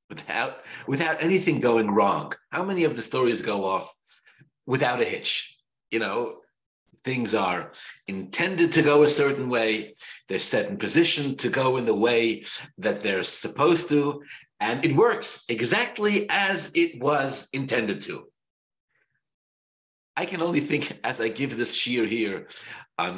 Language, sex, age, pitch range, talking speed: English, male, 50-69, 110-155 Hz, 150 wpm